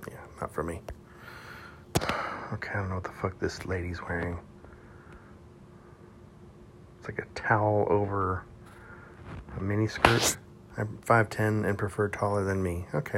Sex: male